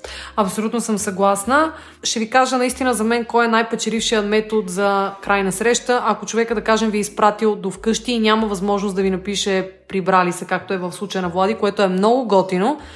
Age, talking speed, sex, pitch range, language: 20-39, 200 wpm, female, 200-265 Hz, Bulgarian